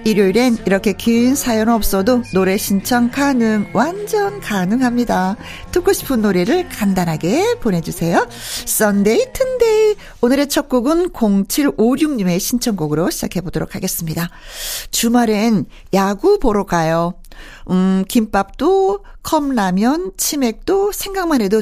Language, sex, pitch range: Korean, female, 190-265 Hz